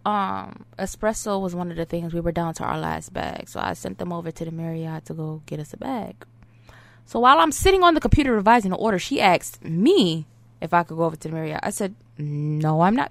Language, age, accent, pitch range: English, 20-39, American, 115-175 Hz